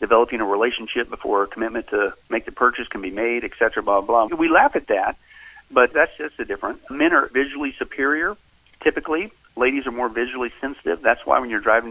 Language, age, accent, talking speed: English, 40-59, American, 200 wpm